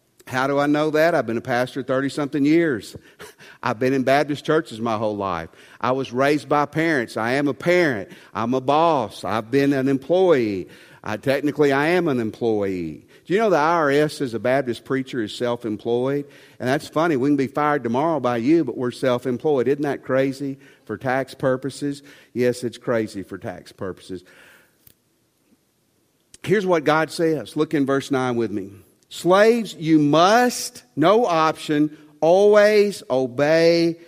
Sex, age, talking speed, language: male, 50-69, 165 wpm, English